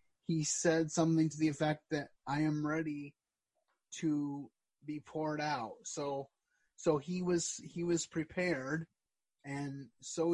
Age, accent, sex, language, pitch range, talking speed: 30-49, American, male, English, 145-160 Hz, 135 wpm